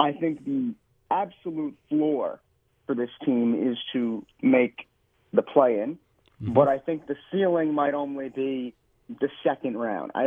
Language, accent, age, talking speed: English, American, 40-59, 145 wpm